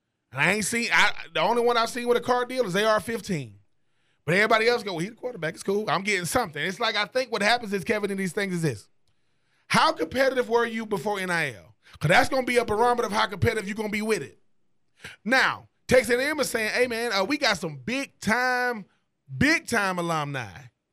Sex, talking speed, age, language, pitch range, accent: male, 220 wpm, 30-49, English, 200-250 Hz, American